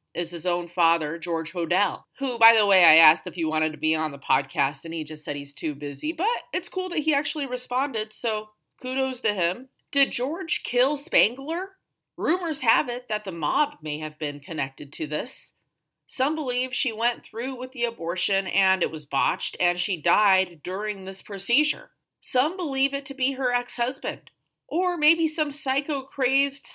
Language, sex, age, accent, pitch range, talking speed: English, female, 30-49, American, 170-255 Hz, 185 wpm